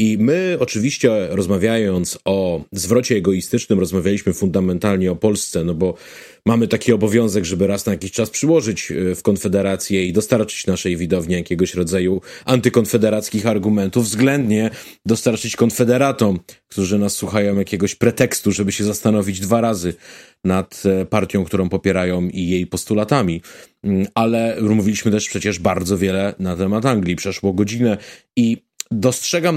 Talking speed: 130 wpm